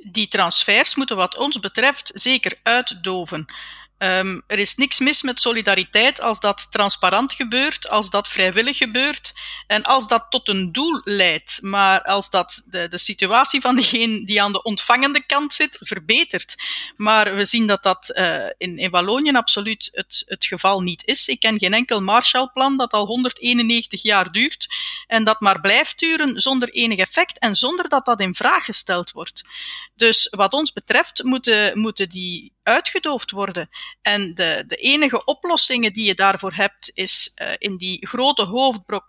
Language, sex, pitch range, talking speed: Dutch, female, 195-260 Hz, 165 wpm